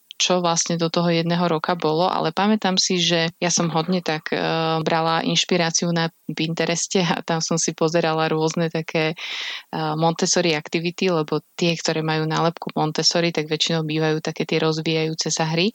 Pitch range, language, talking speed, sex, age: 160-175 Hz, Slovak, 170 wpm, female, 20-39